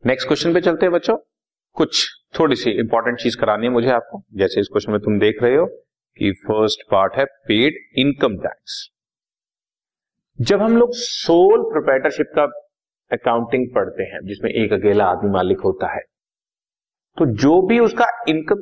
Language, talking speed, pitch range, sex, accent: Hindi, 165 wpm, 115-190 Hz, male, native